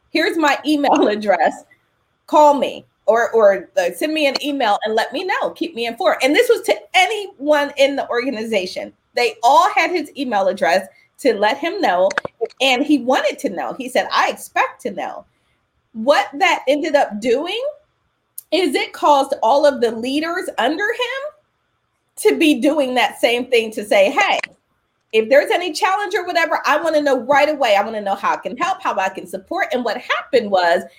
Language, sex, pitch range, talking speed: English, female, 225-320 Hz, 190 wpm